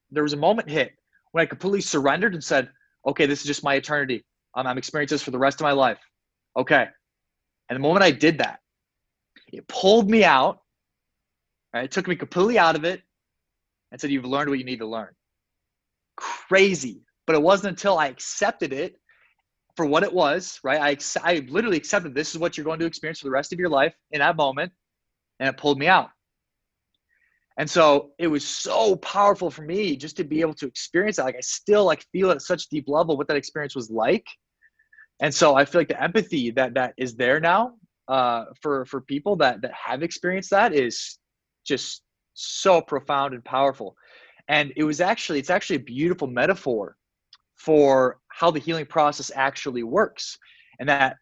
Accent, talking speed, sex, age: American, 195 wpm, male, 20-39